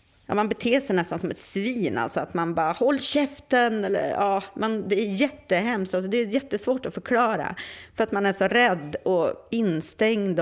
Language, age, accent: Swedish, 30-49, native